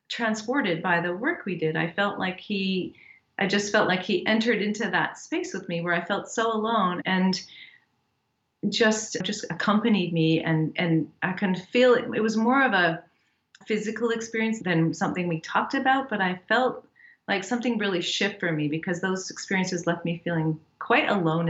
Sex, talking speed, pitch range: female, 185 wpm, 165-215 Hz